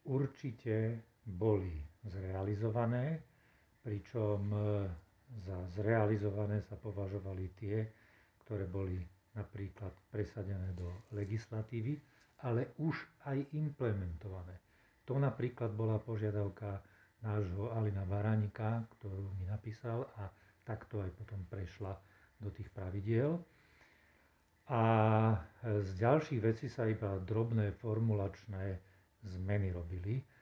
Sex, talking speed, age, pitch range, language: male, 95 wpm, 50-69, 100-110 Hz, Slovak